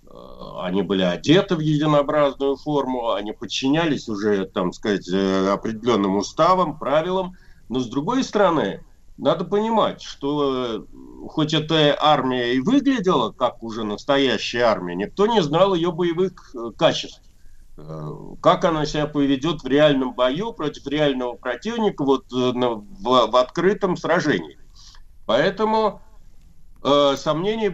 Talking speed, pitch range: 110 wpm, 105-170 Hz